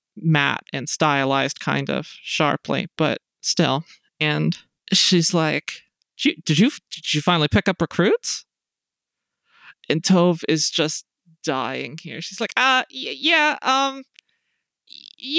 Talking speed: 130 wpm